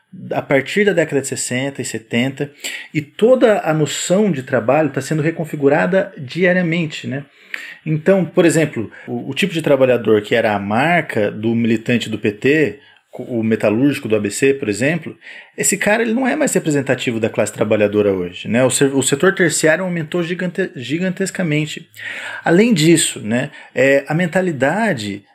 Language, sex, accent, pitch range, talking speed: Portuguese, male, Brazilian, 120-175 Hz, 150 wpm